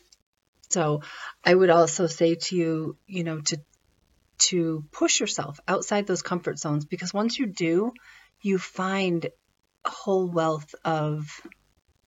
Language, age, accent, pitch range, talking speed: English, 40-59, American, 160-190 Hz, 135 wpm